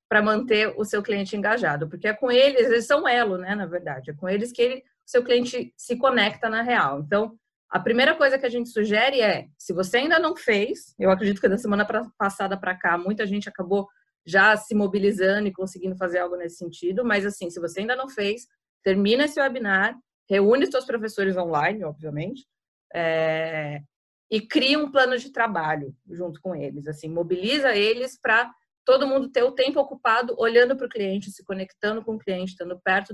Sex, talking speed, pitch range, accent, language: female, 190 wpm, 190-245 Hz, Brazilian, Portuguese